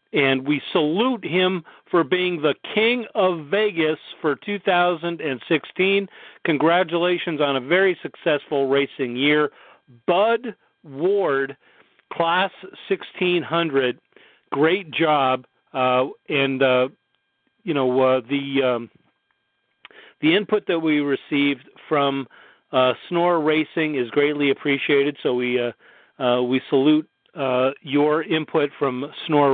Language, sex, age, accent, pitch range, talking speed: English, male, 40-59, American, 140-190 Hz, 115 wpm